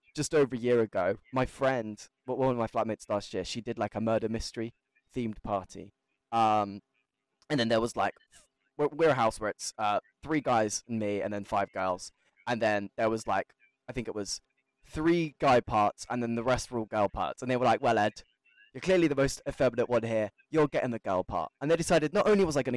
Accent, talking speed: British, 230 wpm